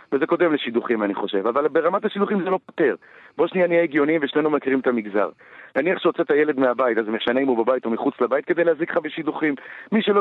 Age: 40-59